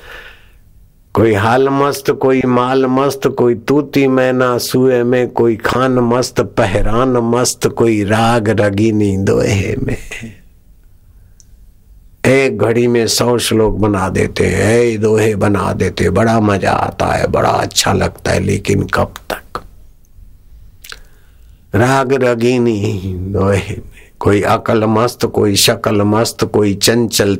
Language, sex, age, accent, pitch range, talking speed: Hindi, male, 60-79, native, 95-120 Hz, 120 wpm